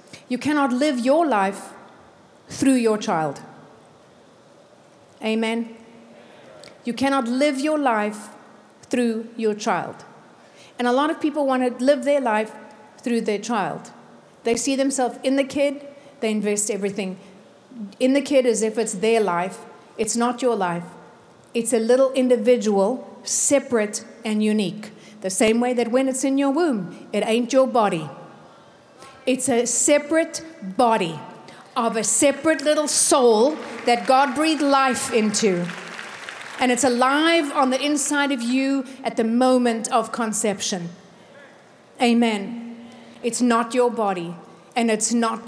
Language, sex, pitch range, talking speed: English, female, 220-270 Hz, 140 wpm